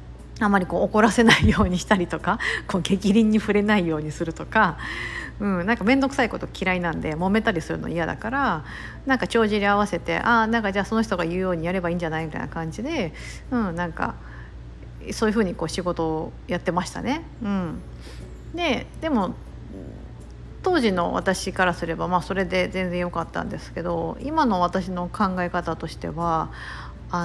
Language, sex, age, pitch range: Japanese, female, 50-69, 170-230 Hz